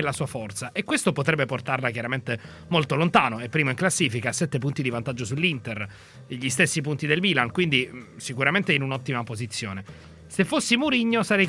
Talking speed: 180 wpm